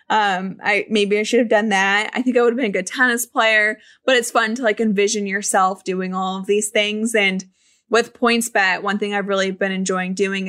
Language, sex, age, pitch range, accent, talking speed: English, female, 20-39, 190-225 Hz, American, 235 wpm